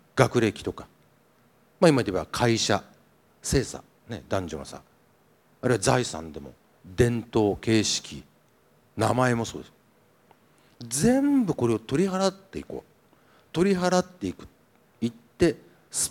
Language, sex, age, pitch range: Japanese, male, 50-69, 110-170 Hz